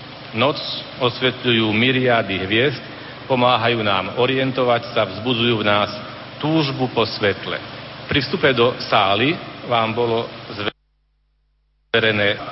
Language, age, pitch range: Slovak, 40-59, 105-135 Hz